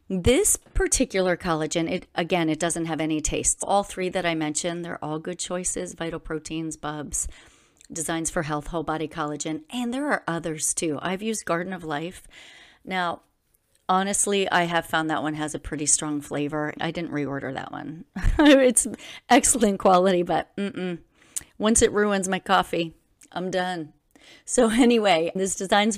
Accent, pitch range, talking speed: American, 160-200 Hz, 165 wpm